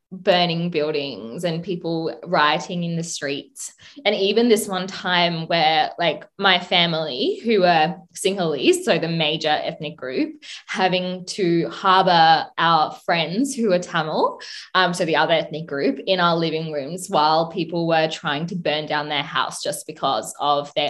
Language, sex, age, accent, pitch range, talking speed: English, female, 20-39, Australian, 165-215 Hz, 160 wpm